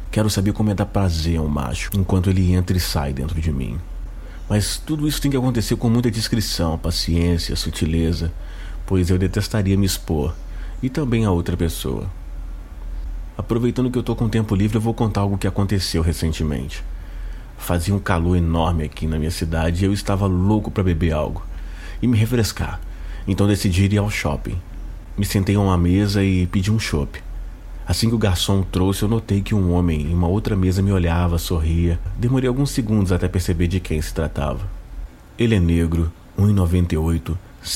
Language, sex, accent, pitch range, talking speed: Portuguese, male, Brazilian, 85-100 Hz, 180 wpm